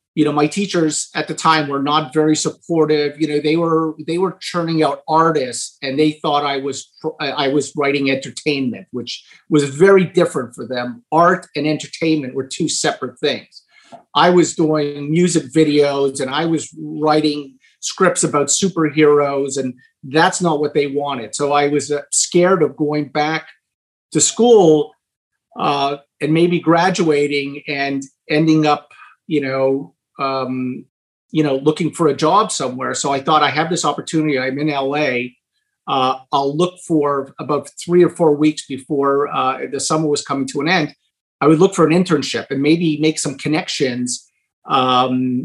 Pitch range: 140-160 Hz